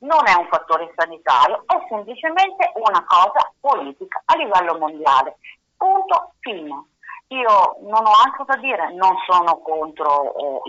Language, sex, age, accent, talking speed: Italian, female, 50-69, native, 140 wpm